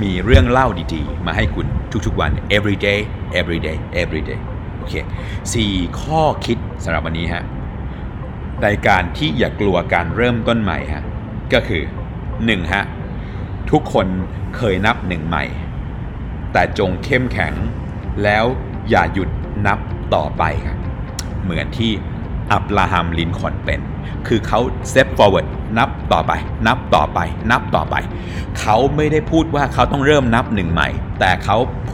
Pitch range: 85-110 Hz